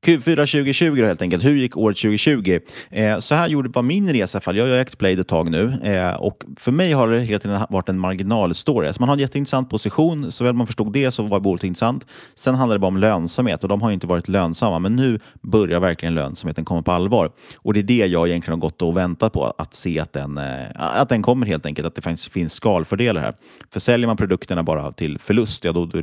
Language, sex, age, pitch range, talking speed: Swedish, male, 30-49, 85-115 Hz, 250 wpm